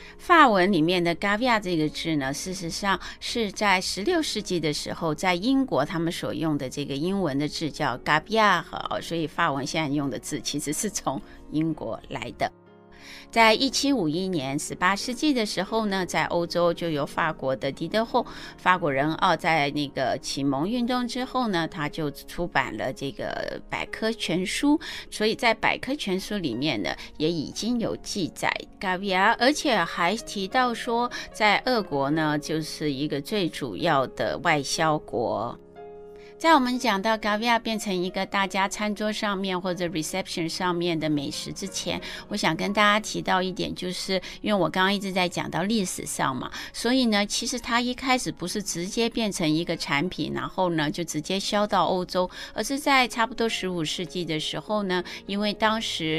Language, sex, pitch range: Chinese, female, 155-220 Hz